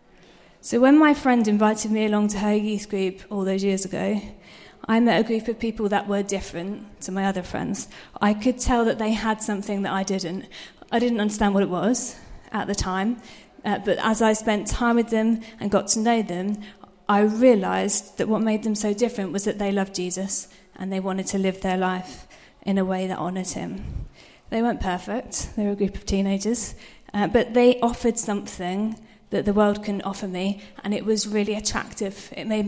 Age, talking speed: 30-49, 210 wpm